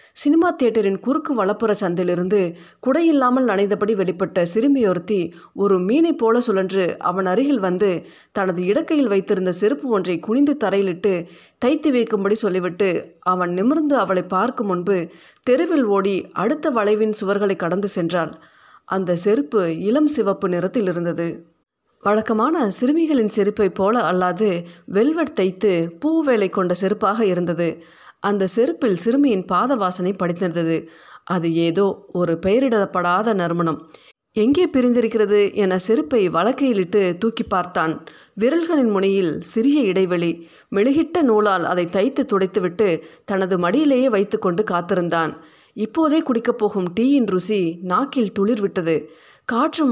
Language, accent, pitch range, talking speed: Tamil, native, 180-240 Hz, 110 wpm